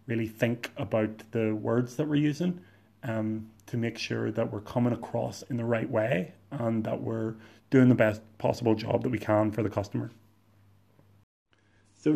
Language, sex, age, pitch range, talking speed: English, male, 20-39, 110-125 Hz, 175 wpm